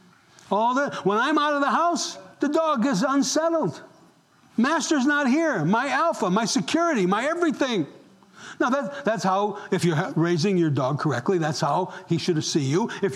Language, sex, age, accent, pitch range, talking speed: English, male, 60-79, American, 180-260 Hz, 175 wpm